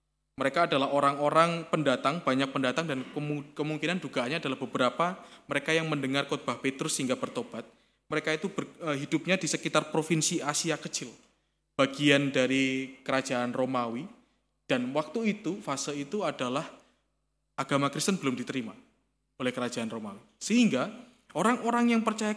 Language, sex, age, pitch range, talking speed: Indonesian, male, 20-39, 135-195 Hz, 130 wpm